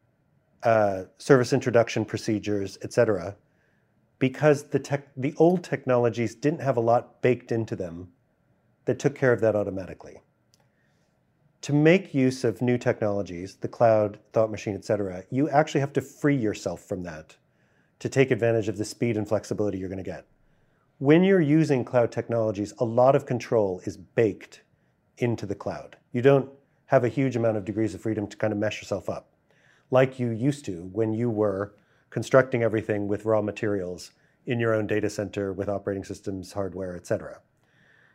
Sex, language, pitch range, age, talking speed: male, English, 105-130 Hz, 40-59, 170 wpm